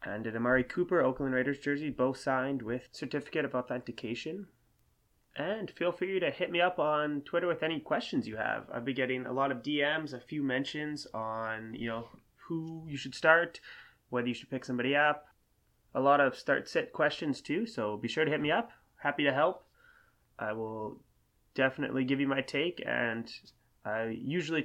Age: 20-39